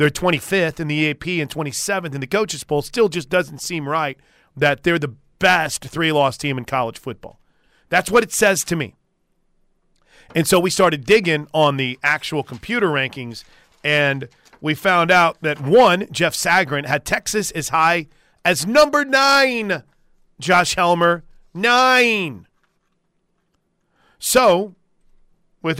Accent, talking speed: American, 145 wpm